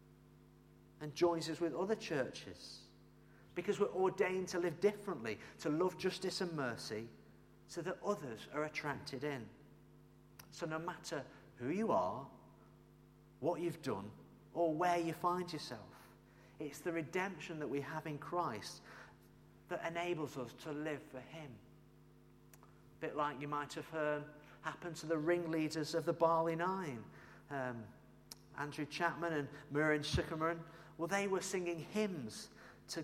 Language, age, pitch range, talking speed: English, 40-59, 140-175 Hz, 145 wpm